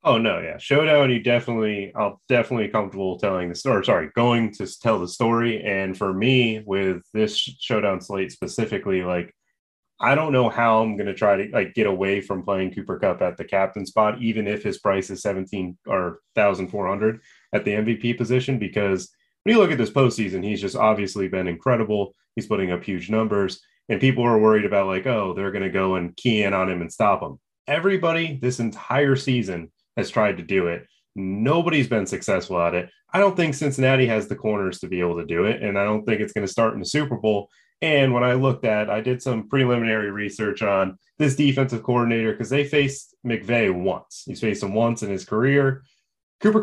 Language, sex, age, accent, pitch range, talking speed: English, male, 30-49, American, 100-130 Hz, 210 wpm